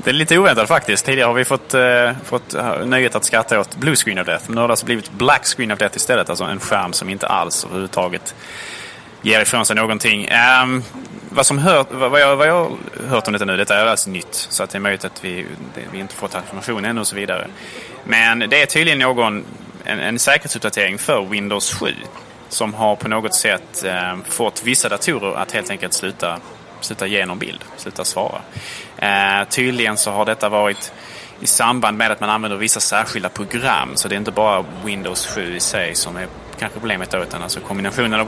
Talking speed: 215 wpm